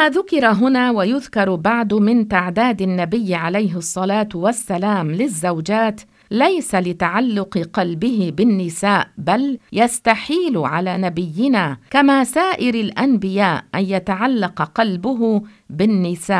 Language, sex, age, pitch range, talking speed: English, female, 50-69, 185-240 Hz, 100 wpm